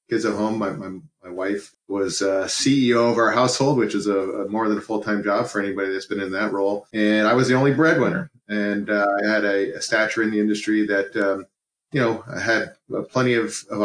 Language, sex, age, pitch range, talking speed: English, male, 30-49, 100-120 Hz, 245 wpm